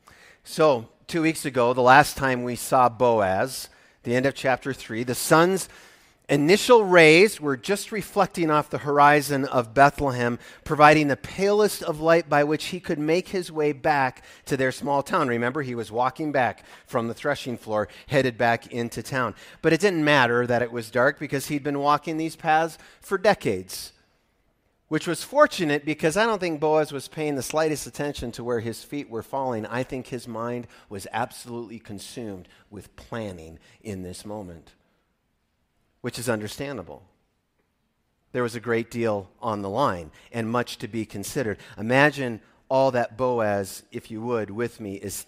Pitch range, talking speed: 115-155 Hz, 170 wpm